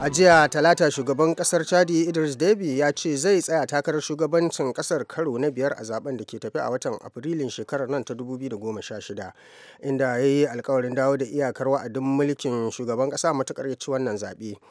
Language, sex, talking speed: English, male, 175 wpm